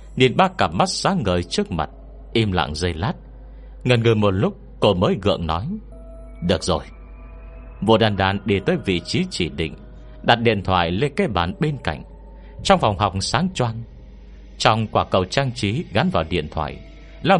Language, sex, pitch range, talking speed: Vietnamese, male, 85-120 Hz, 185 wpm